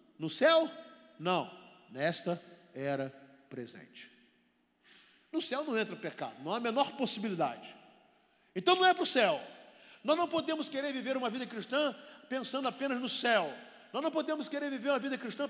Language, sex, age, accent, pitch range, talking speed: Portuguese, male, 50-69, Brazilian, 175-255 Hz, 165 wpm